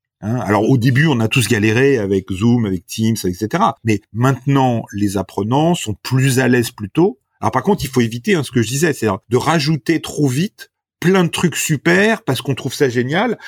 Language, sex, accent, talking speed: French, male, French, 205 wpm